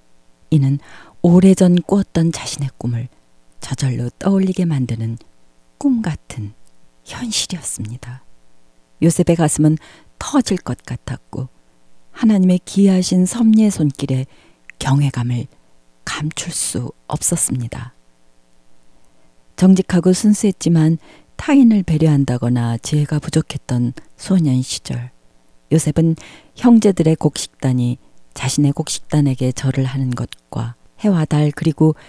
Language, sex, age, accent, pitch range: Korean, female, 40-59, native, 120-165 Hz